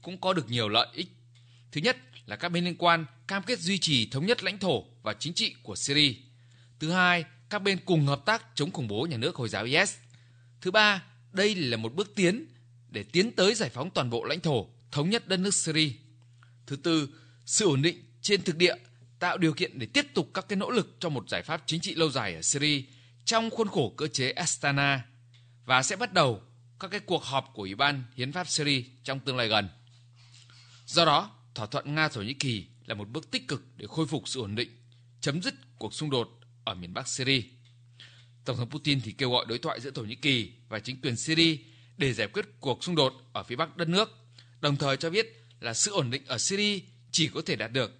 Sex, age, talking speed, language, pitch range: male, 20-39, 230 wpm, Vietnamese, 120-175 Hz